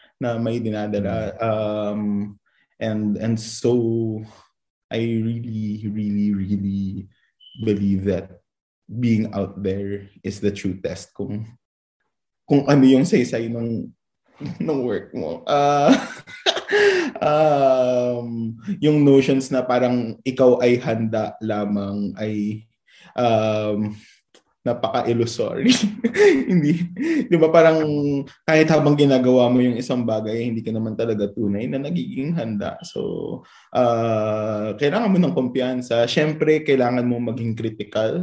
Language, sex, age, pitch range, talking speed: Filipino, male, 20-39, 105-125 Hz, 110 wpm